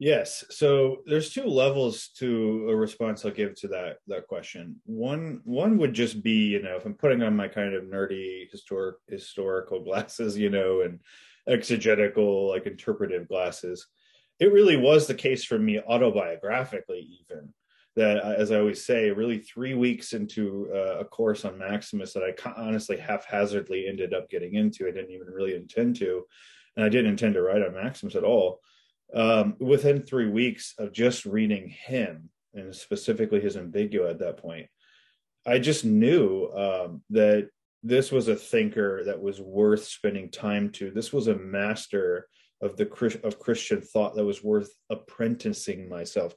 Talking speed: 170 wpm